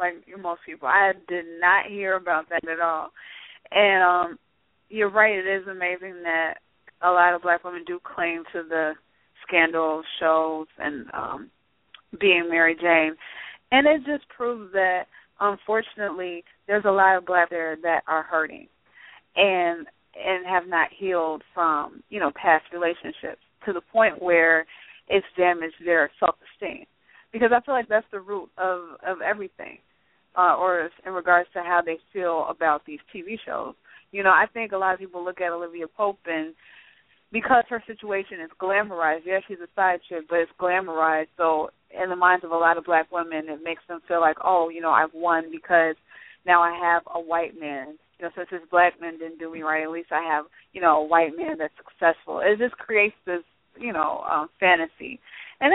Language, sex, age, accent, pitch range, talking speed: English, female, 30-49, American, 165-195 Hz, 190 wpm